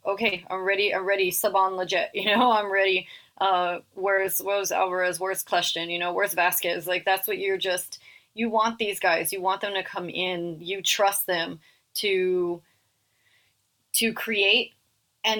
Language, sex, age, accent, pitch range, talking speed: English, female, 30-49, American, 180-220 Hz, 170 wpm